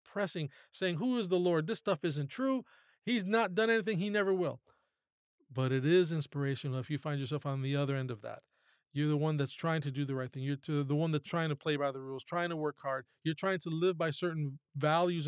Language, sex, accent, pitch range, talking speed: English, male, American, 145-195 Hz, 245 wpm